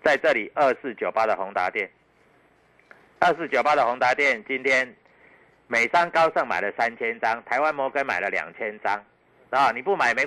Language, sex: Chinese, male